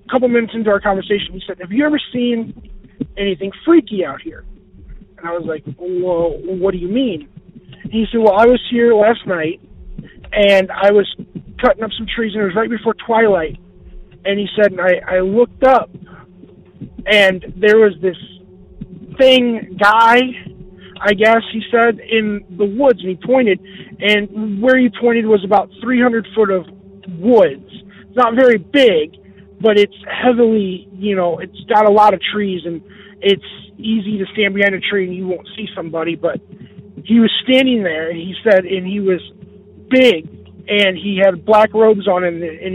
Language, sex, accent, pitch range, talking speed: English, male, American, 185-225 Hz, 175 wpm